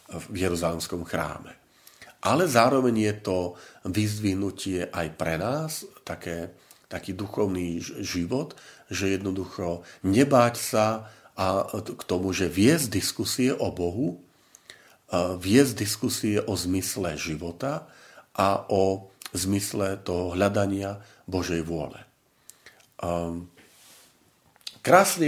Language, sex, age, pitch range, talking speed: Slovak, male, 40-59, 90-110 Hz, 100 wpm